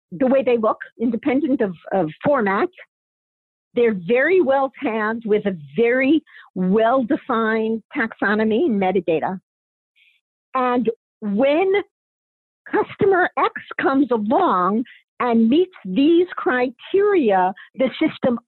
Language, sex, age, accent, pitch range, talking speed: English, female, 50-69, American, 210-290 Hz, 105 wpm